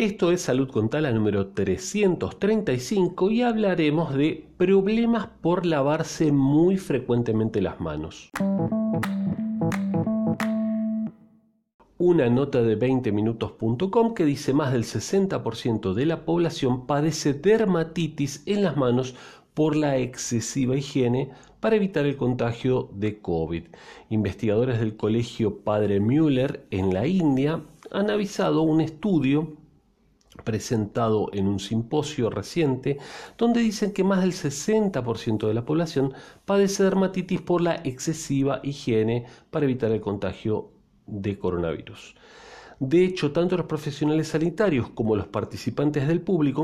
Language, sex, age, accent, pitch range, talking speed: Spanish, male, 40-59, Argentinian, 115-175 Hz, 120 wpm